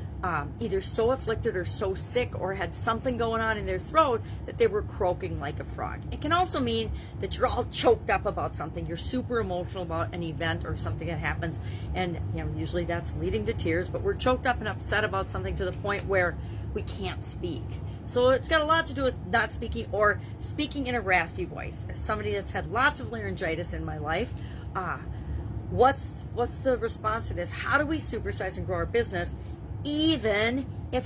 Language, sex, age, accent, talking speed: English, female, 40-59, American, 210 wpm